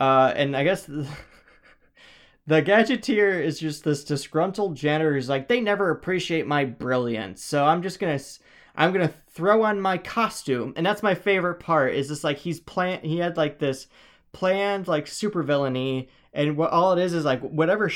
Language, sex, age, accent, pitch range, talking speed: English, male, 20-39, American, 130-170 Hz, 185 wpm